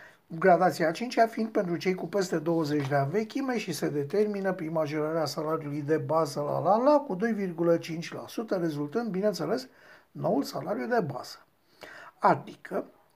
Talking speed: 135 wpm